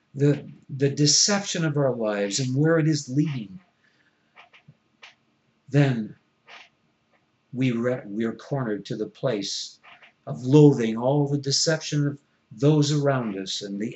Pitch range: 110-145 Hz